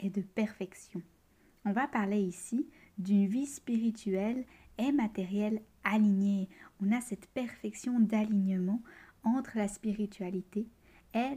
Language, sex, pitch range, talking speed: French, female, 200-245 Hz, 115 wpm